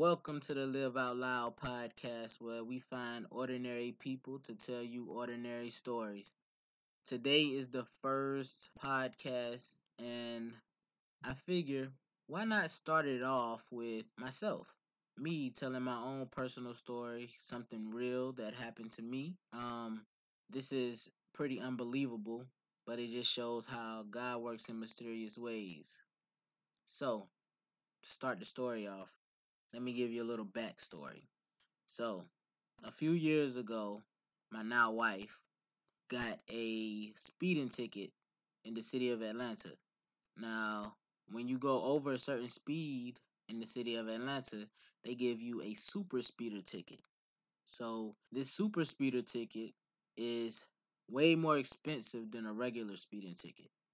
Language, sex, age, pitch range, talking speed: English, male, 20-39, 115-135 Hz, 135 wpm